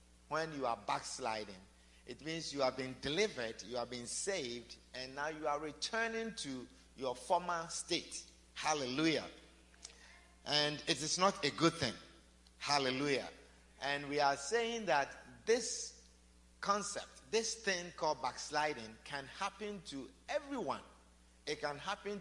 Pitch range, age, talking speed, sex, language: 120-190 Hz, 50-69, 135 wpm, male, English